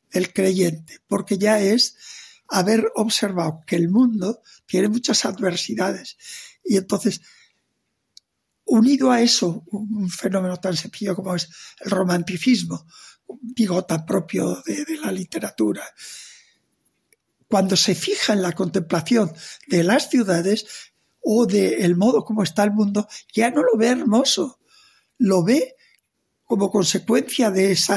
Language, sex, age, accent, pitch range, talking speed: Spanish, male, 60-79, Spanish, 185-235 Hz, 130 wpm